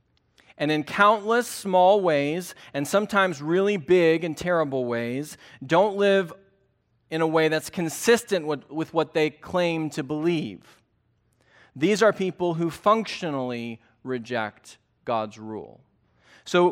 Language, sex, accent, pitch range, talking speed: English, male, American, 115-175 Hz, 125 wpm